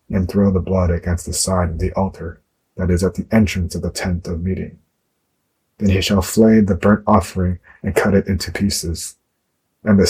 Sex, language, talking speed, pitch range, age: male, English, 200 wpm, 90-100 Hz, 30-49